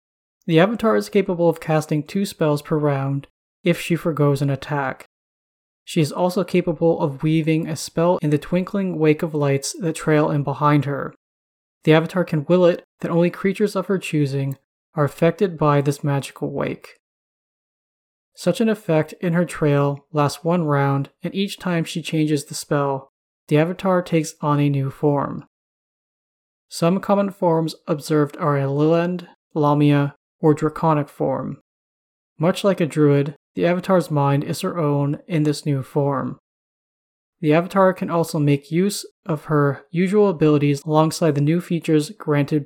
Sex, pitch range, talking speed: male, 145-170 Hz, 160 wpm